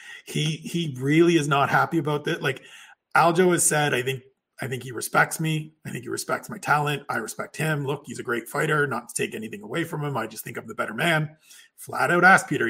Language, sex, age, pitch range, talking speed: English, male, 40-59, 140-180 Hz, 240 wpm